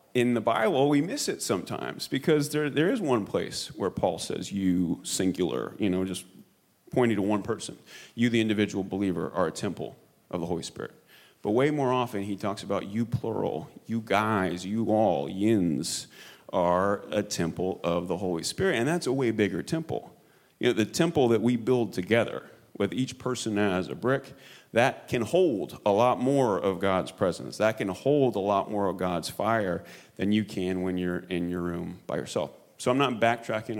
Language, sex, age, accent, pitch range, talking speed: English, male, 30-49, American, 95-120 Hz, 195 wpm